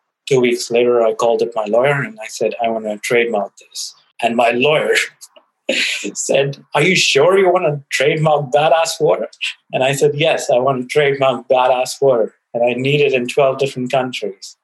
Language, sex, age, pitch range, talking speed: English, male, 30-49, 130-175 Hz, 195 wpm